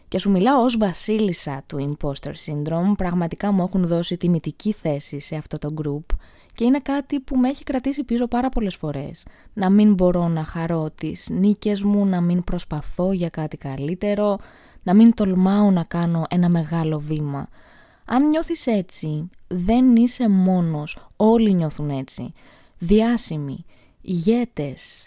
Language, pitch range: Greek, 160-220 Hz